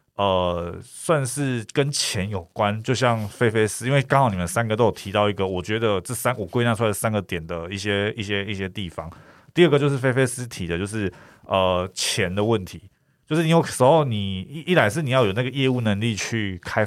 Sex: male